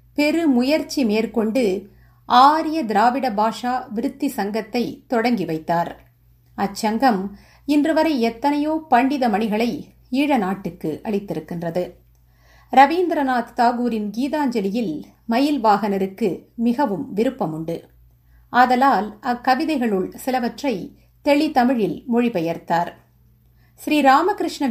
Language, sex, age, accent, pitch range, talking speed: Tamil, female, 50-69, native, 195-270 Hz, 75 wpm